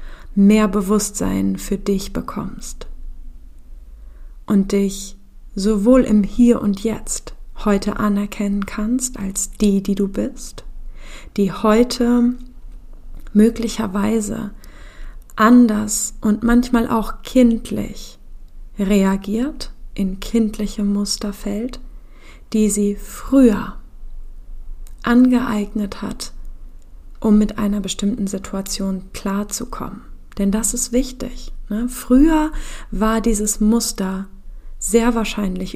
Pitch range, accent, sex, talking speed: 195-225 Hz, German, female, 90 wpm